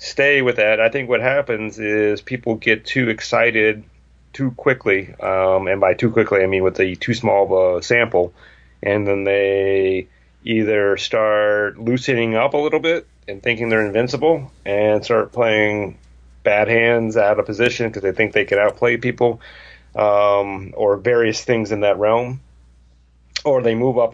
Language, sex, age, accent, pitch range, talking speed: English, male, 30-49, American, 95-120 Hz, 170 wpm